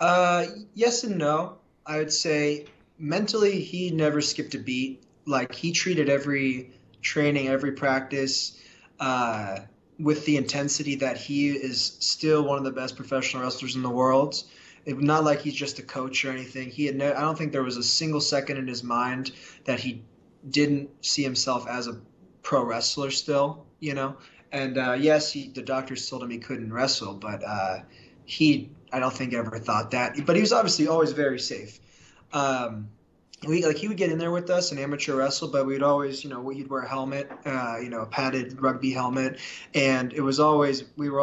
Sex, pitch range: male, 130-150 Hz